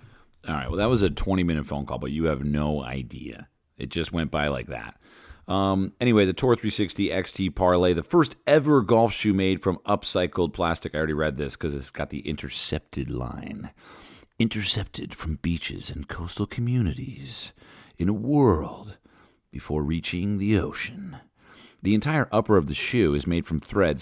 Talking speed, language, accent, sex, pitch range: 170 wpm, English, American, male, 80-110 Hz